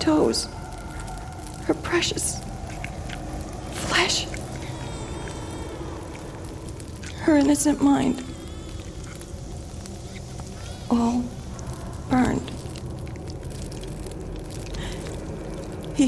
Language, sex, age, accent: English, female, 40-59, American